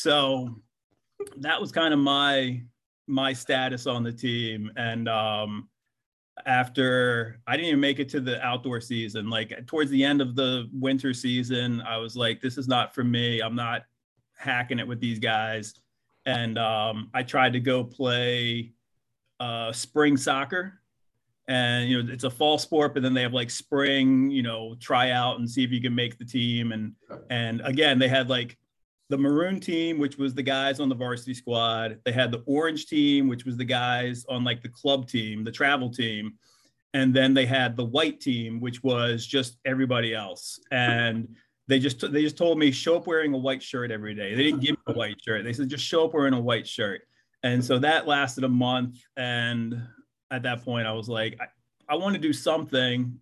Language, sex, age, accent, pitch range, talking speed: English, male, 30-49, American, 120-135 Hz, 200 wpm